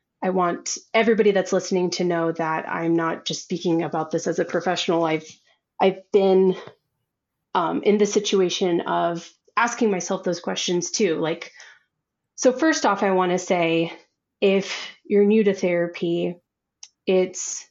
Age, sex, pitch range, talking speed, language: 30-49, female, 170-200 Hz, 150 wpm, English